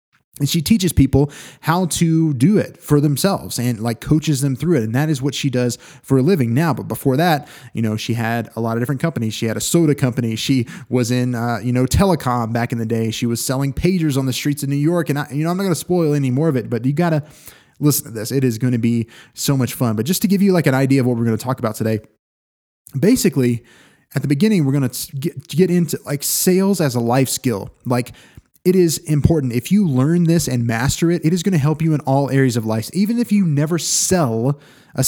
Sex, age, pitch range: male, 20-39, 120-155 Hz